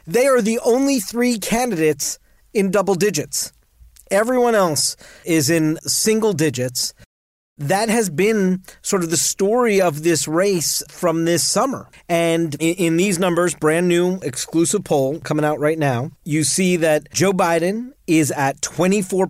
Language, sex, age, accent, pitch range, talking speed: English, male, 40-59, American, 150-200 Hz, 150 wpm